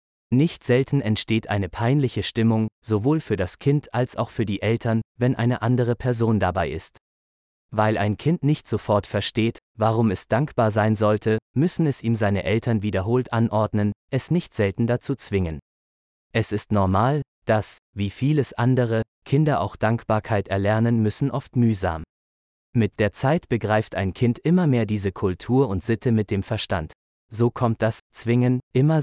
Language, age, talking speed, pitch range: German, 20-39, 160 wpm, 100-125 Hz